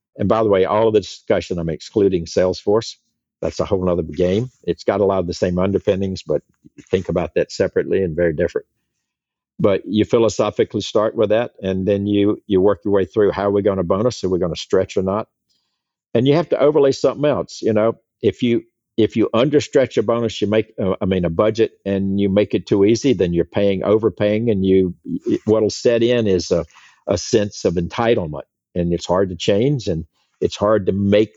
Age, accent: 50-69, American